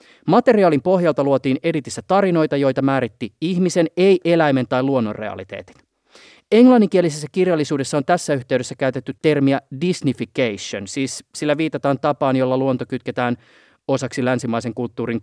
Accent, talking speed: native, 120 wpm